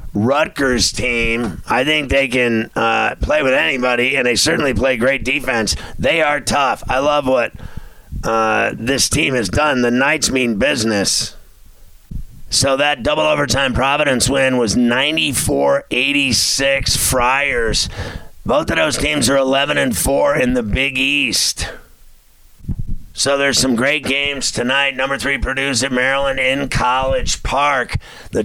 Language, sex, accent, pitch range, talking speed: English, male, American, 125-140 Hz, 140 wpm